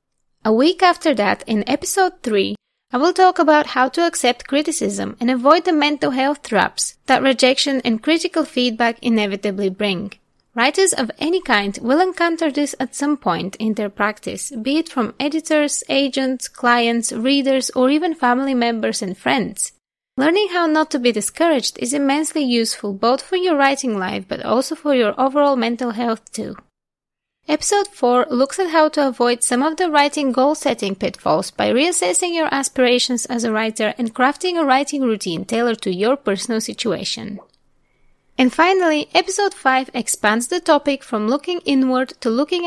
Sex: female